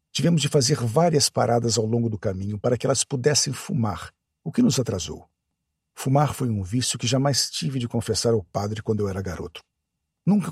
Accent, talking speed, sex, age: Brazilian, 195 wpm, male, 50-69